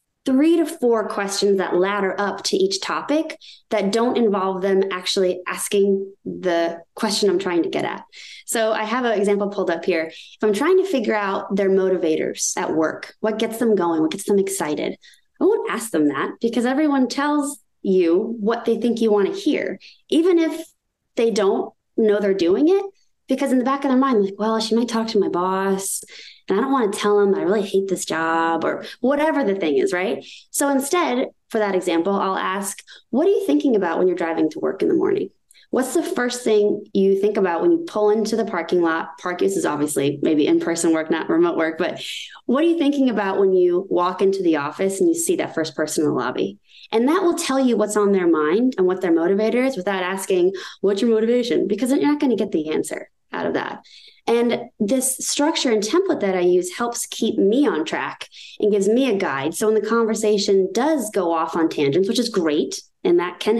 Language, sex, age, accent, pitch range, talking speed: English, female, 20-39, American, 190-270 Hz, 220 wpm